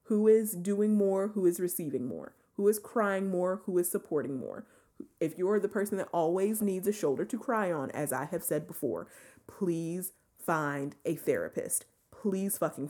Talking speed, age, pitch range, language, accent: 180 wpm, 30-49, 155-200 Hz, English, American